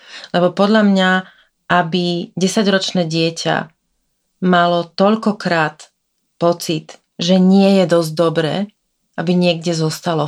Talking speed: 100 wpm